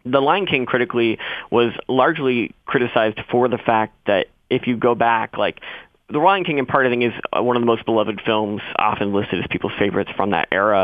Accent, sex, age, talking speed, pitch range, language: American, male, 20-39, 210 wpm, 110-130 Hz, English